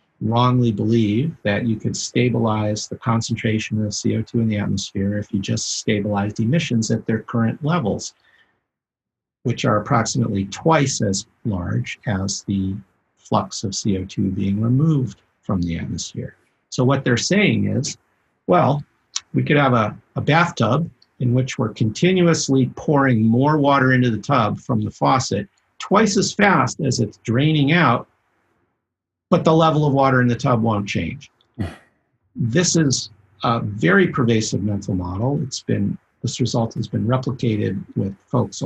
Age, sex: 50-69, male